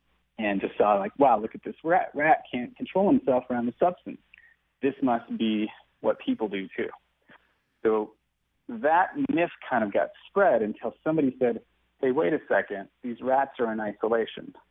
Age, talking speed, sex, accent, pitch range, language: 40-59, 170 wpm, male, American, 105-135 Hz, English